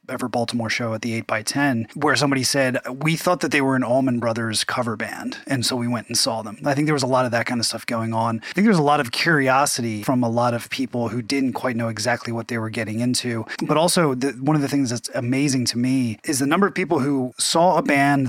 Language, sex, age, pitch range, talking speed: English, male, 30-49, 115-135 Hz, 265 wpm